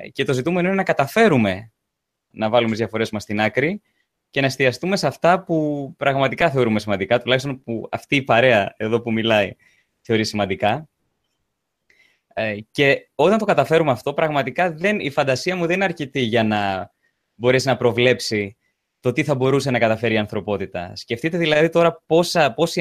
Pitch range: 115-160 Hz